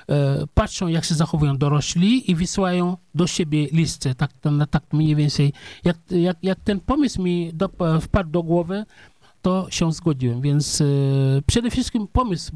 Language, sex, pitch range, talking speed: Polish, male, 150-190 Hz, 145 wpm